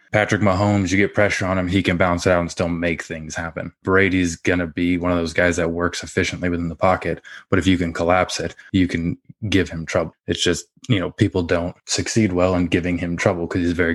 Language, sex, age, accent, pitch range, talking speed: English, male, 20-39, American, 90-100 Hz, 240 wpm